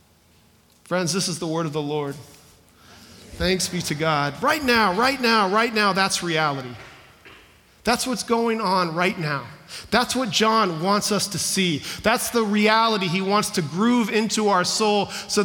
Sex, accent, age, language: male, American, 40-59, English